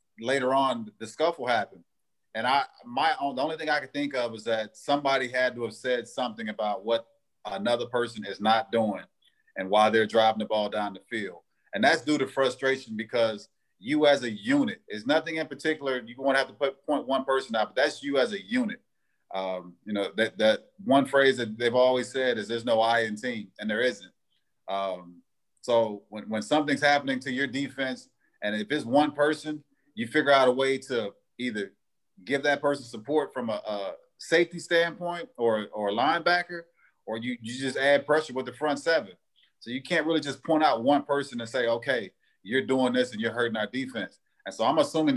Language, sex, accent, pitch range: English, male, American, 115-140 Hz